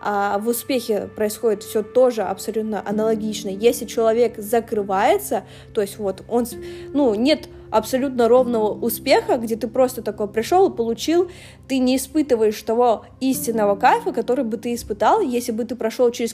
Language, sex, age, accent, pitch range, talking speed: Russian, female, 20-39, native, 205-250 Hz, 155 wpm